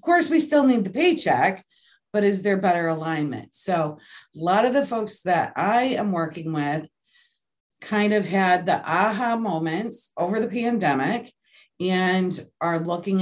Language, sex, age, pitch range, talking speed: English, female, 40-59, 180-240 Hz, 155 wpm